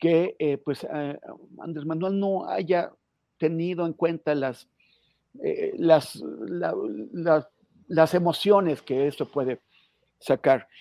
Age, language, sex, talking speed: 50-69, Spanish, male, 120 wpm